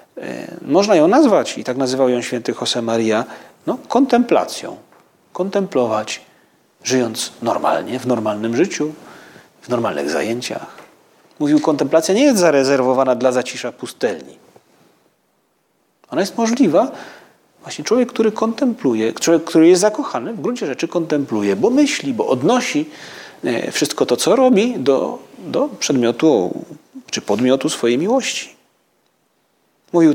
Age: 40-59